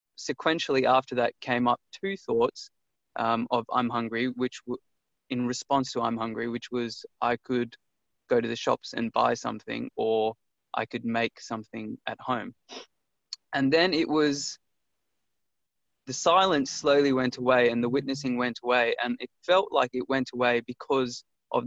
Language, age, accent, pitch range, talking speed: English, 20-39, Australian, 115-130 Hz, 160 wpm